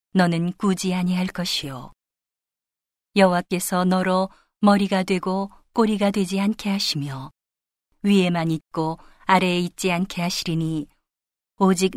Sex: female